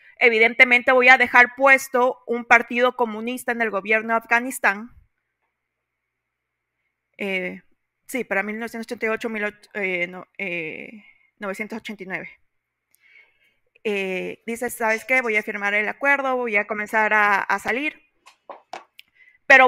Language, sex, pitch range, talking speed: Spanish, female, 210-245 Hz, 110 wpm